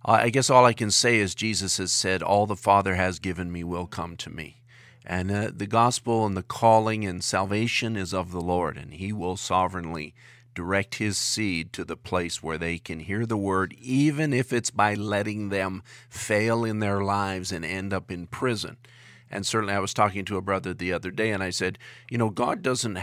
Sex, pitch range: male, 95-120 Hz